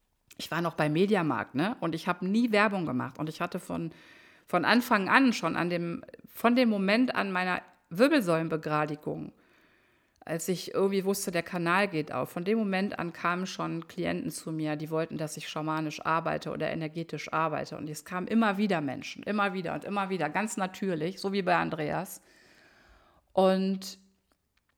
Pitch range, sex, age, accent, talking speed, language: 160-195 Hz, female, 50-69, German, 175 wpm, German